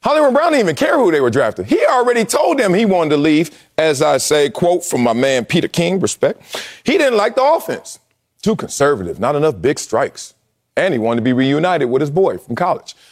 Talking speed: 225 wpm